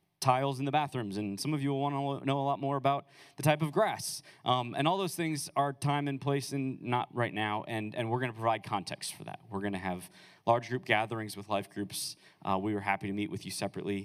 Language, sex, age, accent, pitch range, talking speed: English, male, 20-39, American, 105-140 Hz, 260 wpm